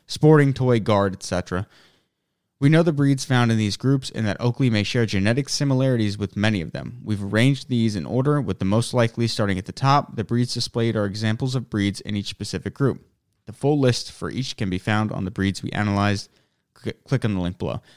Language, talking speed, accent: English, 215 wpm, American